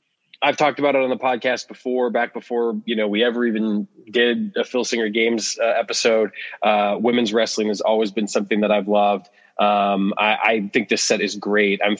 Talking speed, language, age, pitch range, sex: 205 wpm, English, 20-39, 100-110 Hz, male